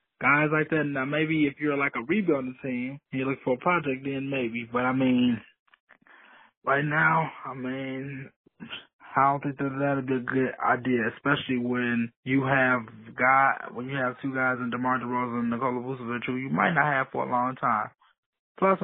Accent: American